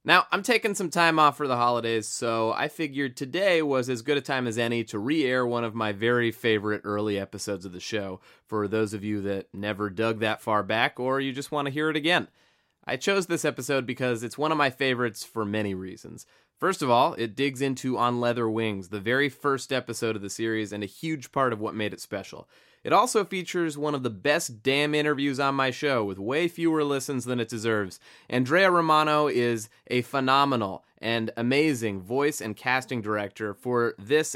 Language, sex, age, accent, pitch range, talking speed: English, male, 20-39, American, 110-145 Hz, 210 wpm